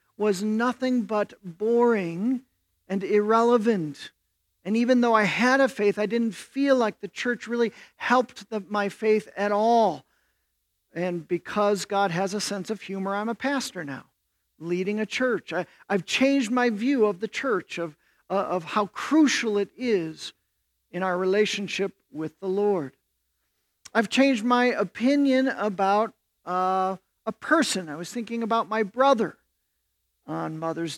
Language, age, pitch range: English, 50-69, 180-235 Hz